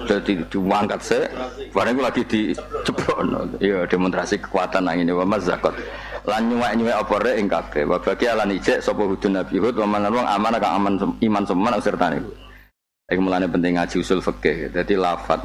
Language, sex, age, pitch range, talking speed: Indonesian, male, 50-69, 95-120 Hz, 180 wpm